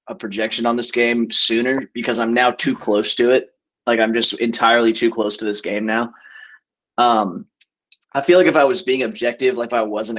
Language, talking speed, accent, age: English, 210 wpm, American, 20-39